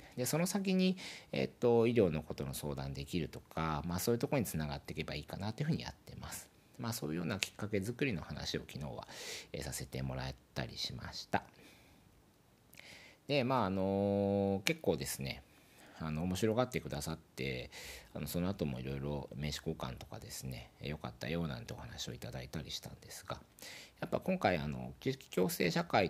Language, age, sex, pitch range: Japanese, 50-69, male, 70-110 Hz